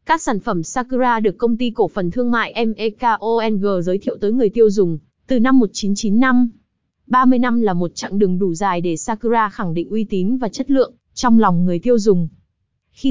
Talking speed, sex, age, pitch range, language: 200 wpm, female, 20-39, 195-250 Hz, Vietnamese